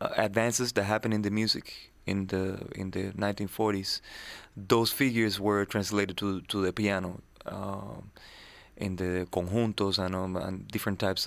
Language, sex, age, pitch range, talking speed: English, male, 20-39, 100-115 Hz, 155 wpm